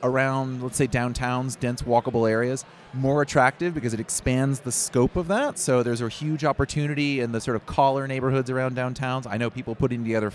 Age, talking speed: 30-49, 195 wpm